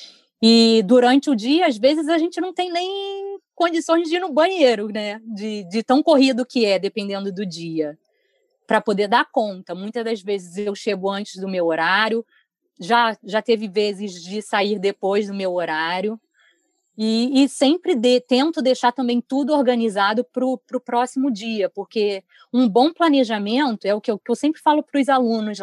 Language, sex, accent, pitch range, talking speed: Portuguese, female, Brazilian, 210-270 Hz, 180 wpm